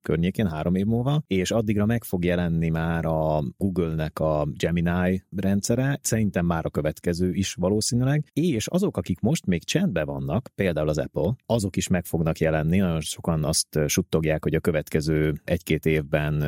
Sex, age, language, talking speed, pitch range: male, 30-49, Hungarian, 165 wpm, 80-100 Hz